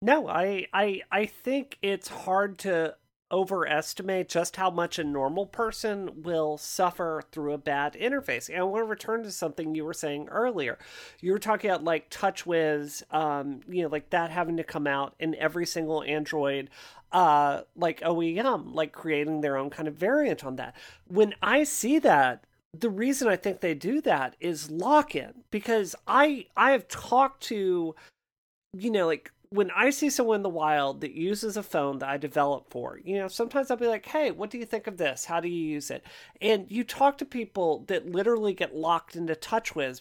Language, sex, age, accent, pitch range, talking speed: English, male, 40-59, American, 160-215 Hz, 195 wpm